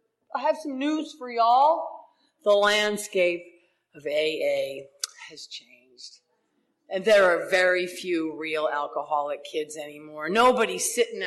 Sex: female